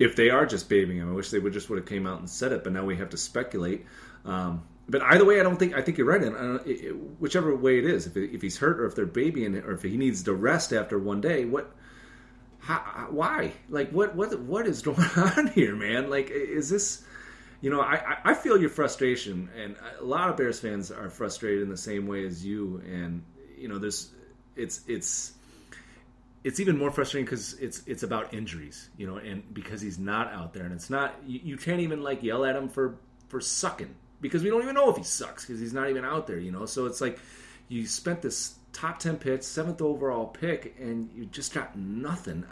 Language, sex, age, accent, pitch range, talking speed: English, male, 30-49, American, 100-155 Hz, 235 wpm